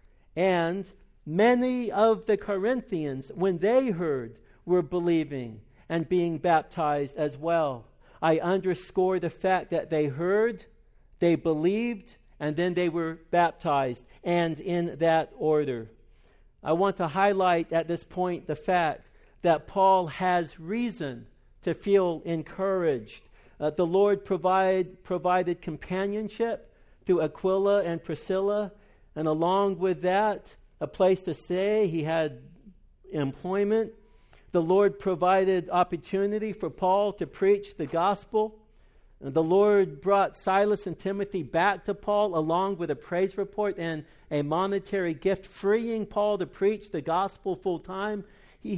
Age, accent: 50-69, American